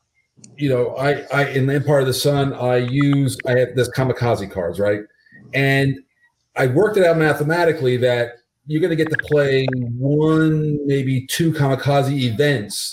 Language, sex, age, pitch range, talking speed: English, male, 40-59, 125-160 Hz, 165 wpm